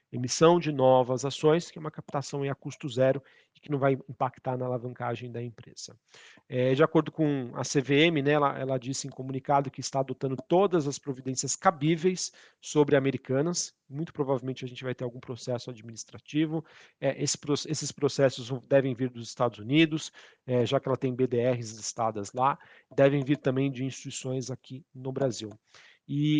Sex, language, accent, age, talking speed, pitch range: male, Portuguese, Brazilian, 40-59, 165 wpm, 130-155 Hz